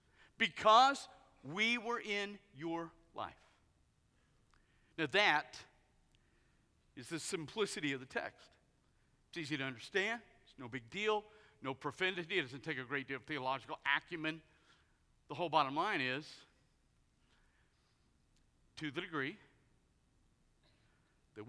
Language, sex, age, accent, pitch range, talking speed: Russian, male, 50-69, American, 130-175 Hz, 115 wpm